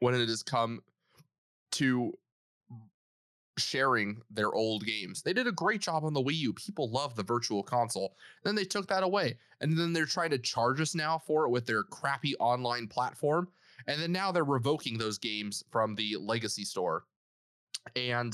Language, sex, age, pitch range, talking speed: English, male, 20-39, 105-130 Hz, 185 wpm